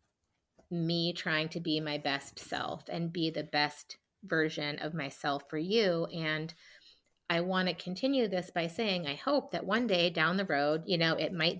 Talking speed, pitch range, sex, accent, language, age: 185 wpm, 155-195 Hz, female, American, English, 30-49